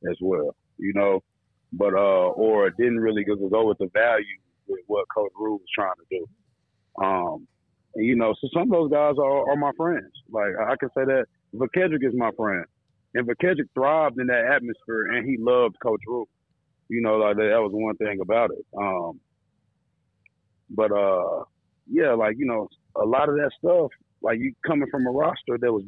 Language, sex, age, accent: English, male, 30-49, American